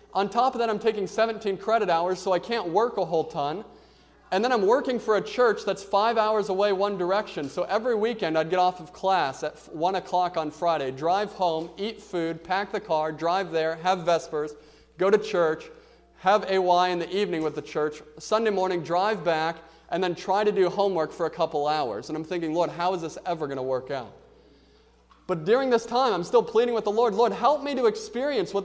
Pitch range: 175-225 Hz